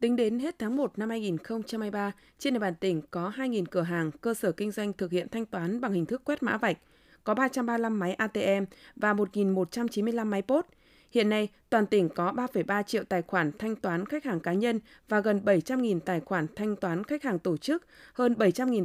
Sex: female